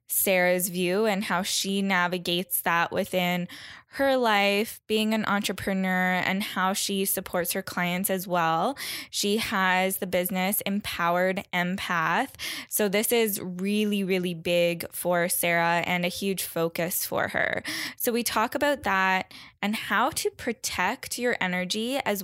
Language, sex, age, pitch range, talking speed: English, female, 10-29, 175-200 Hz, 145 wpm